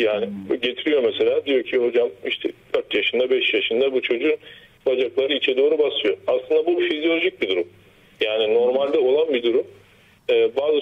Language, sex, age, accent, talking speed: Turkish, male, 40-59, native, 160 wpm